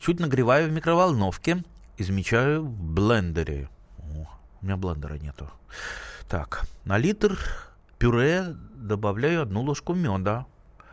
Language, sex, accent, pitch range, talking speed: Russian, male, native, 100-145 Hz, 110 wpm